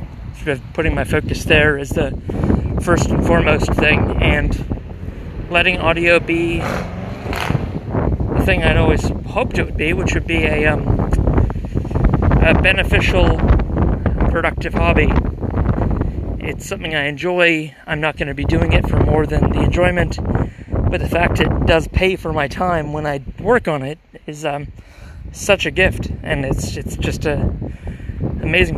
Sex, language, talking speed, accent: male, English, 150 wpm, American